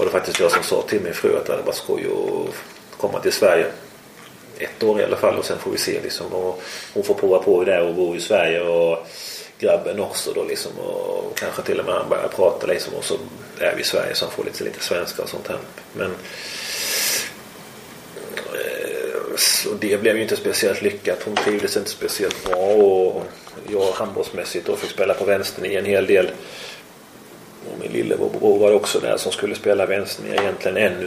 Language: Swedish